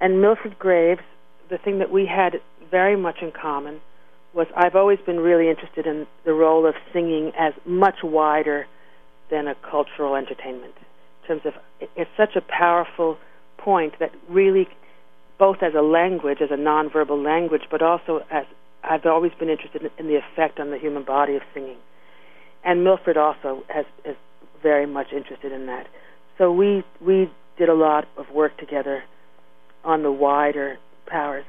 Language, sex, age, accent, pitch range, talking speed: English, female, 50-69, American, 140-175 Hz, 165 wpm